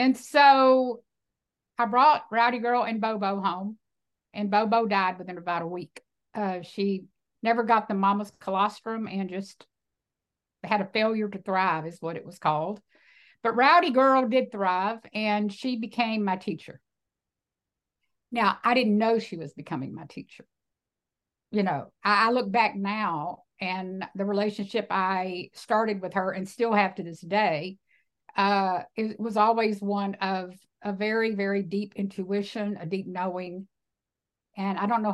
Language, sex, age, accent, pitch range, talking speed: English, female, 60-79, American, 180-215 Hz, 155 wpm